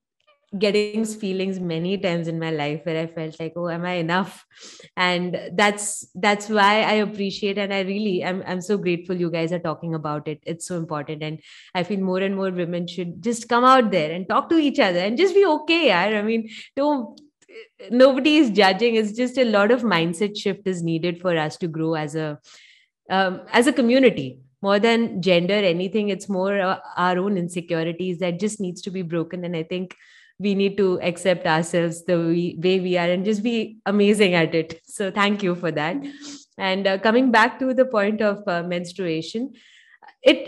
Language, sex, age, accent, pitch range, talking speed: English, female, 20-39, Indian, 175-230 Hz, 200 wpm